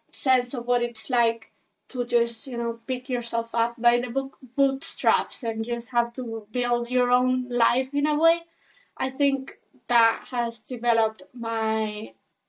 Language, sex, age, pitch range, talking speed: English, female, 20-39, 235-265 Hz, 160 wpm